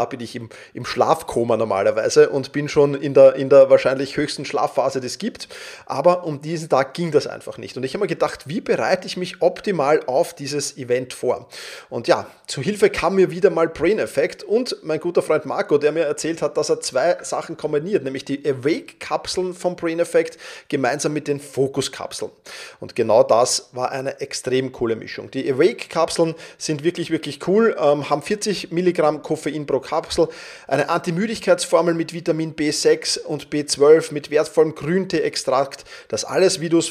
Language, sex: German, male